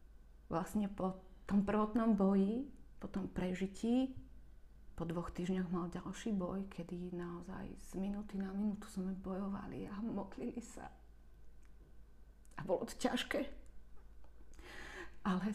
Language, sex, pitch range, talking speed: Slovak, female, 190-275 Hz, 115 wpm